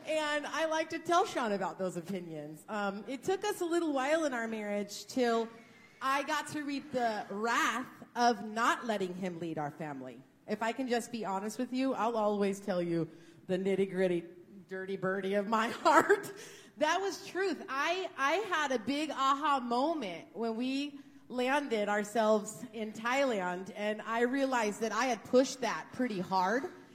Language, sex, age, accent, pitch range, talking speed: English, female, 30-49, American, 210-275 Hz, 175 wpm